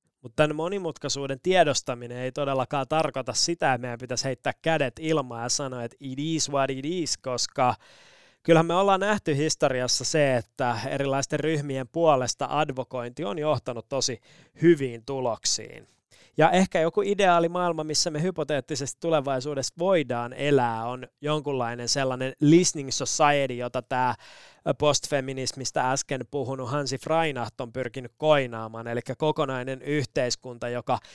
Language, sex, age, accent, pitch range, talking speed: Finnish, male, 20-39, native, 125-155 Hz, 130 wpm